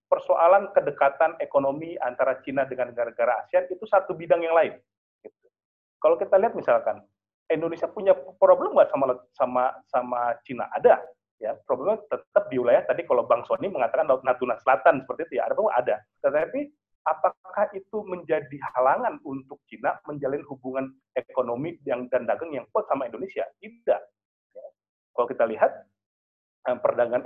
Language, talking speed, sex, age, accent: Indonesian, 150 wpm, male, 40-59, native